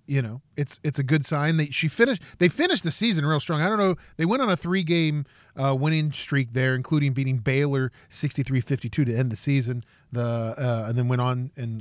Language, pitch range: English, 125-160 Hz